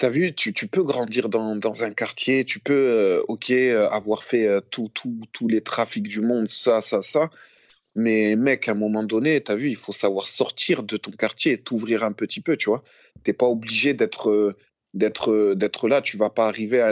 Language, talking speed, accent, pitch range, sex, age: French, 210 wpm, French, 105-130 Hz, male, 20-39